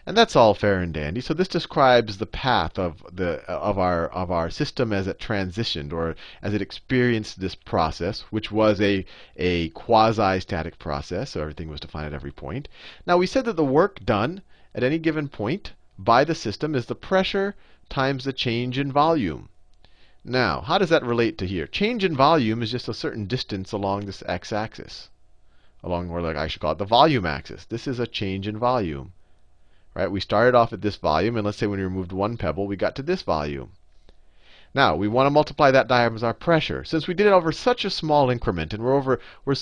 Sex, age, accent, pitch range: male, 40-59, American, 85-135 Hz